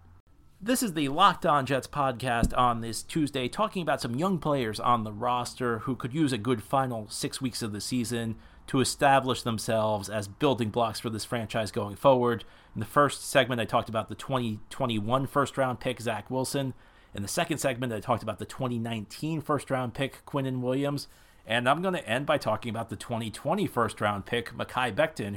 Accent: American